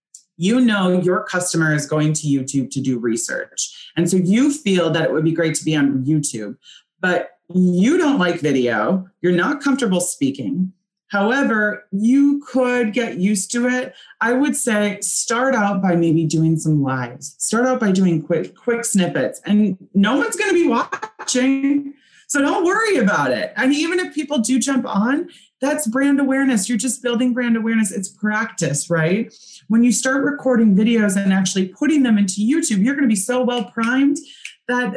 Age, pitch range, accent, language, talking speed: 30-49, 185-255 Hz, American, English, 180 wpm